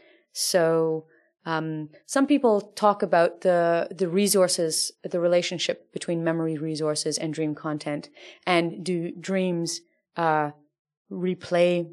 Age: 30-49